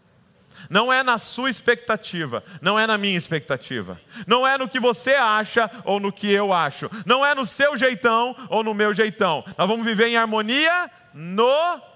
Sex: male